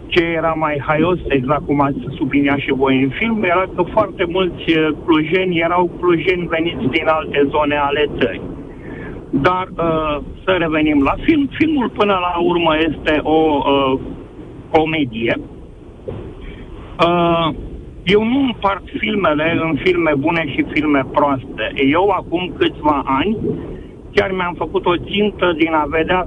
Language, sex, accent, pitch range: Romanian, male, native, 150-190 Hz